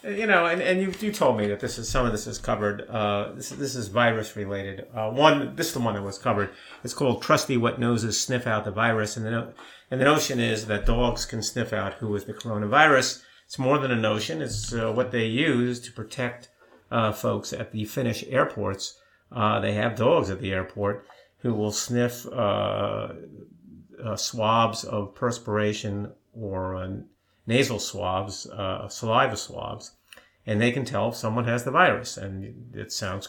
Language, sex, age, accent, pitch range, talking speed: English, male, 50-69, American, 105-130 Hz, 195 wpm